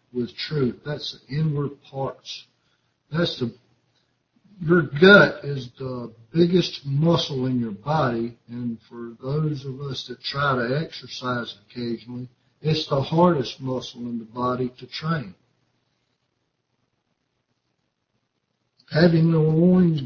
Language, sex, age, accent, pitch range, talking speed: English, male, 60-79, American, 125-155 Hz, 115 wpm